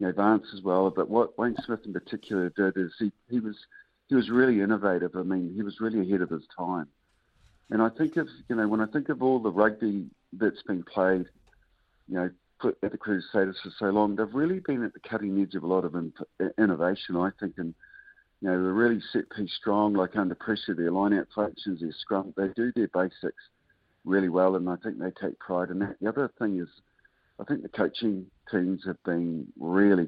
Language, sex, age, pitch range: English, male, 50-69, 90-110 Hz